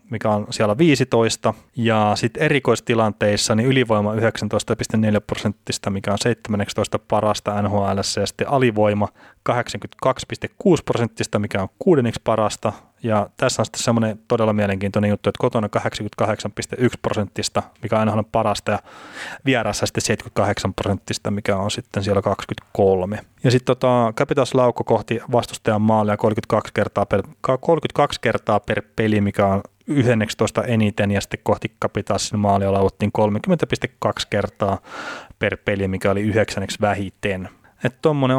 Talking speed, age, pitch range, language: 135 wpm, 30-49, 105-120 Hz, Finnish